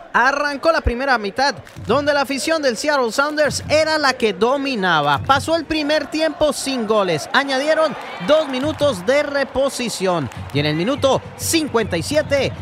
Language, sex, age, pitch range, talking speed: English, male, 30-49, 250-310 Hz, 145 wpm